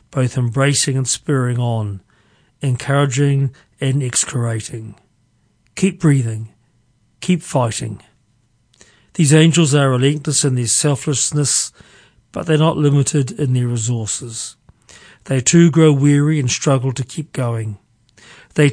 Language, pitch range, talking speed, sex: English, 115-145 Hz, 115 wpm, male